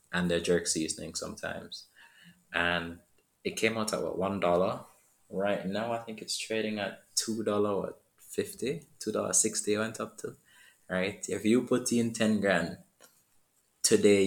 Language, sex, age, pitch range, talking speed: English, male, 20-39, 90-105 Hz, 140 wpm